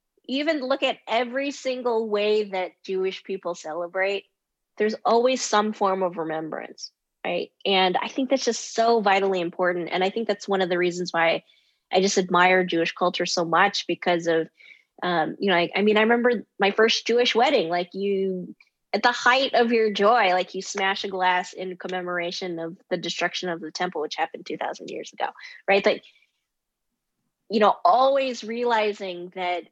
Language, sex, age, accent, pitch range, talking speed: English, female, 20-39, American, 175-210 Hz, 180 wpm